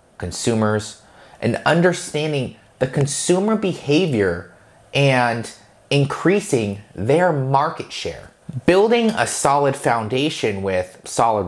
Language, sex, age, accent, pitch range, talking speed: English, male, 30-49, American, 105-145 Hz, 90 wpm